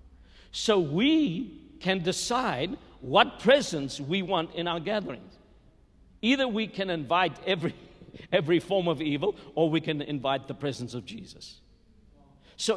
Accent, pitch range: South African, 145-200 Hz